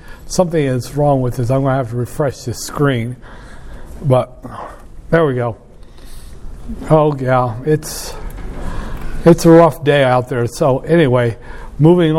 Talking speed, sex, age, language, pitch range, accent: 145 wpm, male, 60-79, English, 140-170 Hz, American